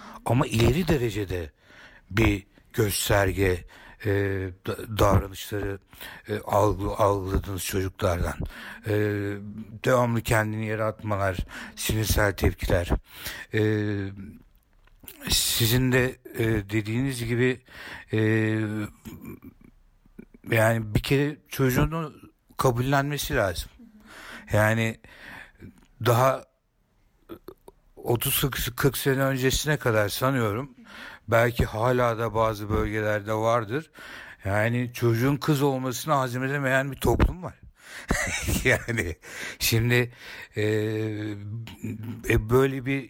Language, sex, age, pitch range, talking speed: Turkish, male, 60-79, 100-125 Hz, 80 wpm